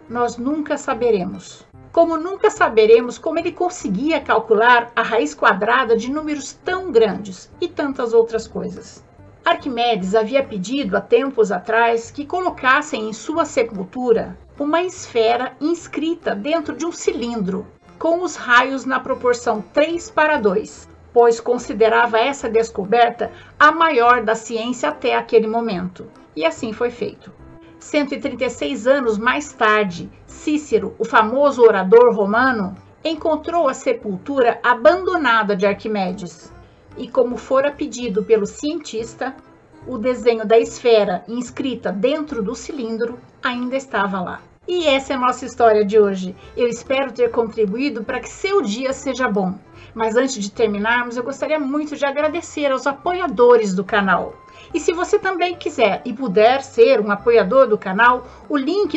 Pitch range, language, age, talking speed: 225-295 Hz, Portuguese, 50-69, 140 wpm